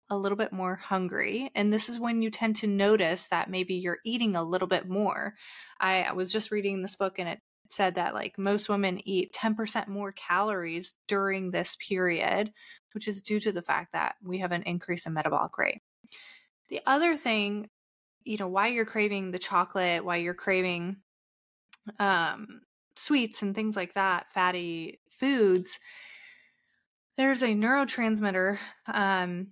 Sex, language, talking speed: female, English, 165 wpm